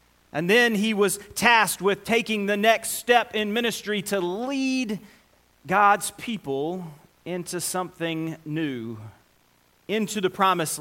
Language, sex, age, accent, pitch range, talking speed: English, male, 30-49, American, 125-190 Hz, 120 wpm